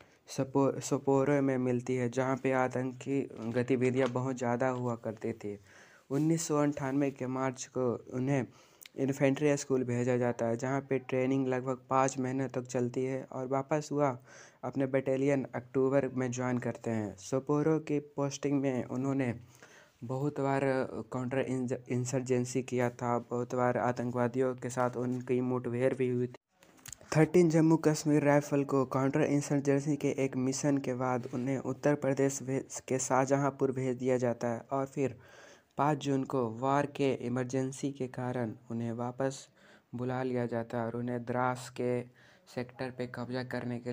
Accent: Indian